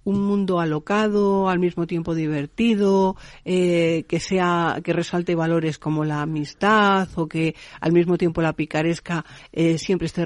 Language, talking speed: Spanish, 150 wpm